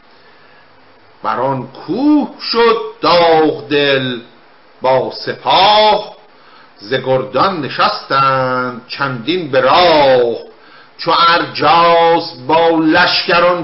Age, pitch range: 50-69, 140-210 Hz